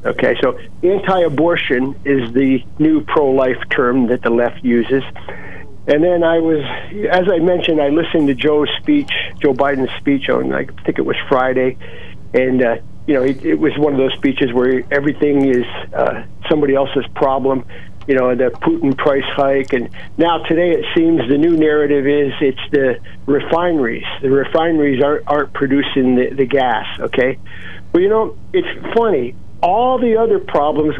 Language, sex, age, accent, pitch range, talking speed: English, male, 50-69, American, 130-165 Hz, 170 wpm